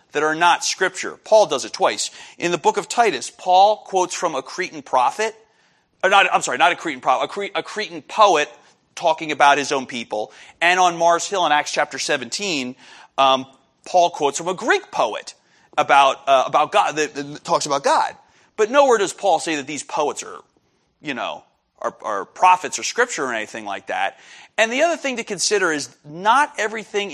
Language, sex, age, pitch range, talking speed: English, male, 40-59, 145-210 Hz, 190 wpm